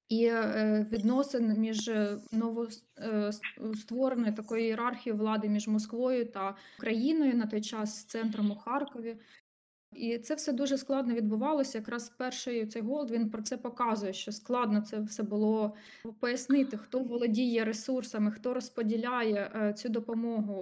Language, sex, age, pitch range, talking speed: Ukrainian, female, 20-39, 210-240 Hz, 130 wpm